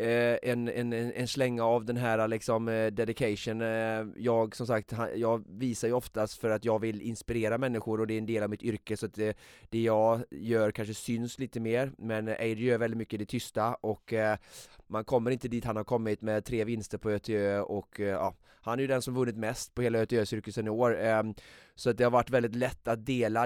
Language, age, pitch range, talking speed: Swedish, 20-39, 110-120 Hz, 215 wpm